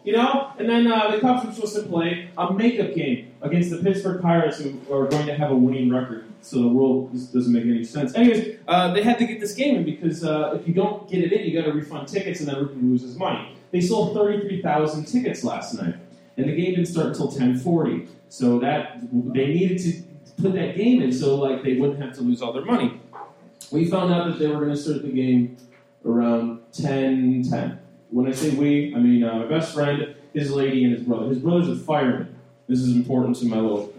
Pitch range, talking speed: 130-190 Hz, 235 wpm